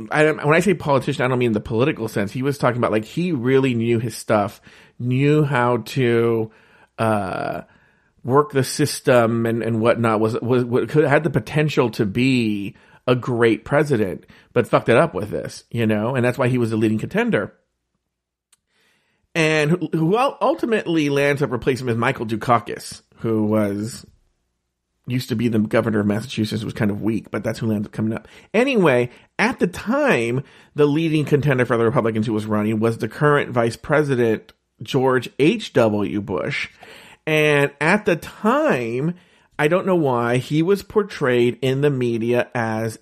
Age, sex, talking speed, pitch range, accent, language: 40-59, male, 175 wpm, 115-145 Hz, American, English